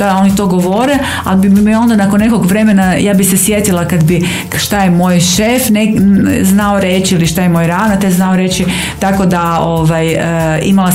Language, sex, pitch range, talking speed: Croatian, female, 155-185 Hz, 190 wpm